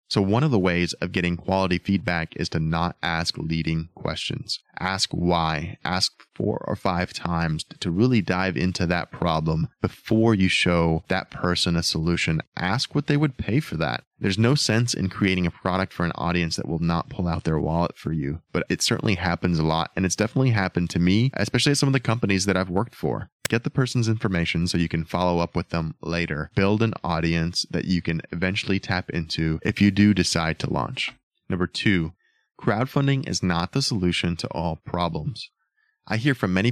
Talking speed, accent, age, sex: 205 wpm, American, 20-39, male